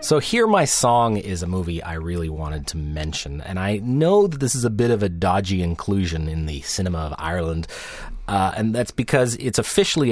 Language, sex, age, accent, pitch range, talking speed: English, male, 30-49, American, 90-120 Hz, 210 wpm